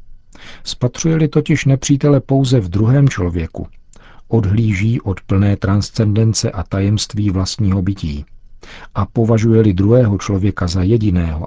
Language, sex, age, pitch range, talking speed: Czech, male, 50-69, 95-115 Hz, 110 wpm